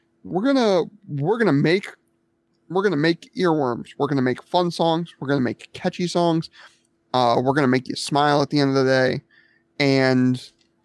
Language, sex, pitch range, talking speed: English, male, 130-160 Hz, 175 wpm